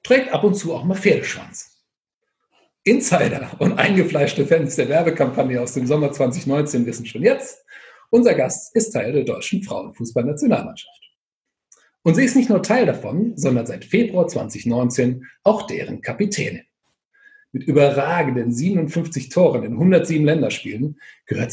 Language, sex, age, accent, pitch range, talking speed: German, male, 40-59, German, 130-200 Hz, 135 wpm